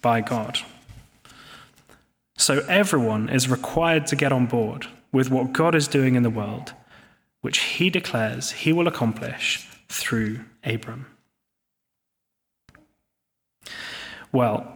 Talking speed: 110 wpm